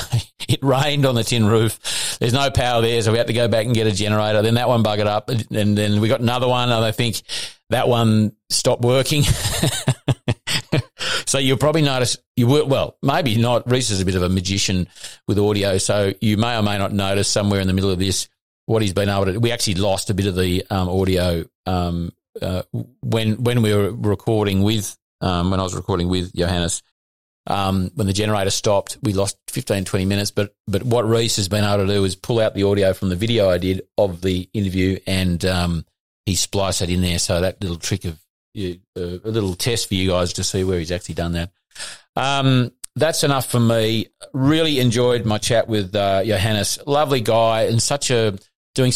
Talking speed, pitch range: 215 wpm, 95-115 Hz